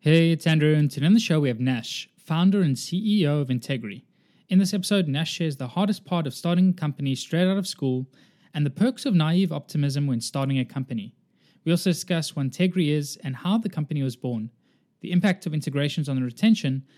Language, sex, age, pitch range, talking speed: English, male, 20-39, 130-175 Hz, 215 wpm